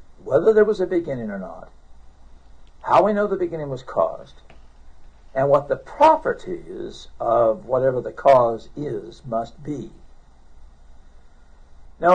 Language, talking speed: English, 130 wpm